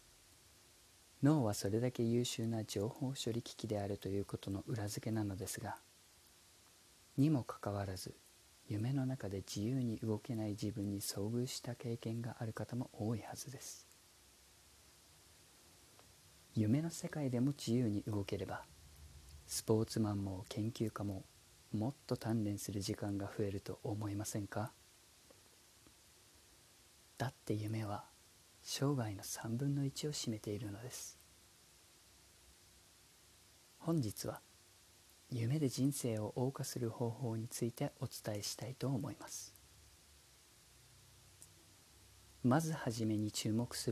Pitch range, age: 95-120 Hz, 40-59